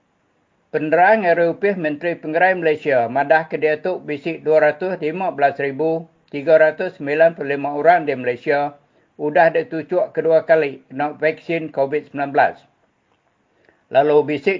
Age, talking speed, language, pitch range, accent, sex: 50-69, 85 wpm, English, 145-165 Hz, Indonesian, male